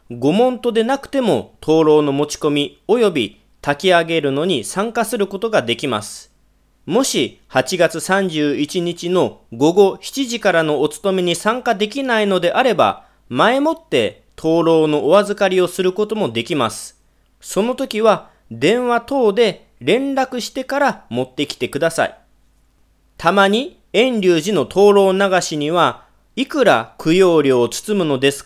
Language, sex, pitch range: Japanese, male, 150-210 Hz